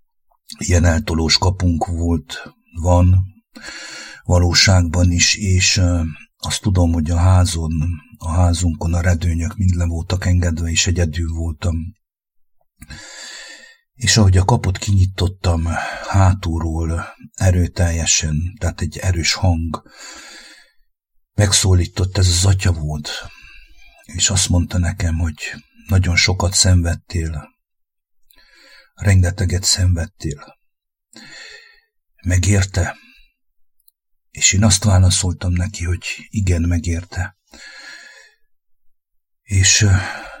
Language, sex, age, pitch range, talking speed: English, male, 60-79, 85-100 Hz, 85 wpm